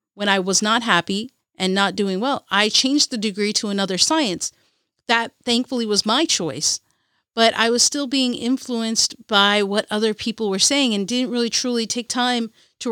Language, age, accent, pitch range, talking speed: English, 40-59, American, 205-255 Hz, 185 wpm